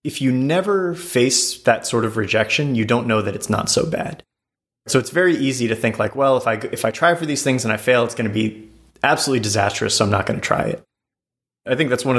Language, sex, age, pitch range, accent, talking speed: English, male, 30-49, 105-125 Hz, American, 255 wpm